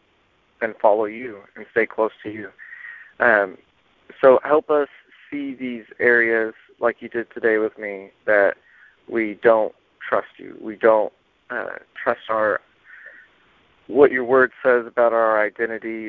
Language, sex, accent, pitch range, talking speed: English, male, American, 105-120 Hz, 140 wpm